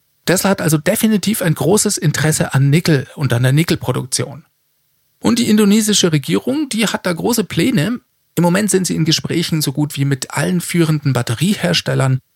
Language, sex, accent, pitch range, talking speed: German, male, German, 140-185 Hz, 170 wpm